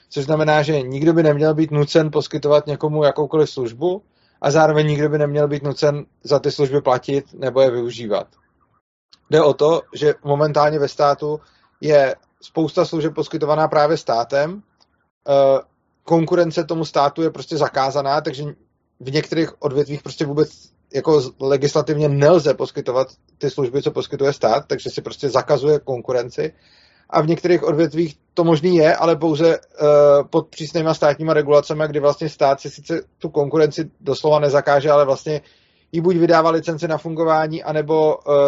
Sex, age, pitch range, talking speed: male, 30-49, 145-160 Hz, 150 wpm